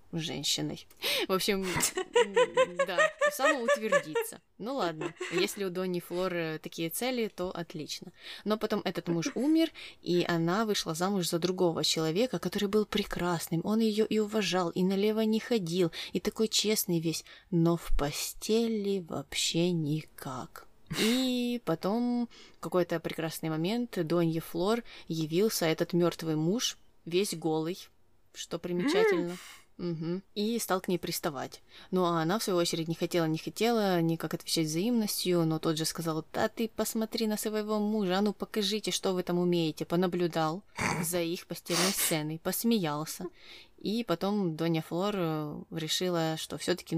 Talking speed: 140 wpm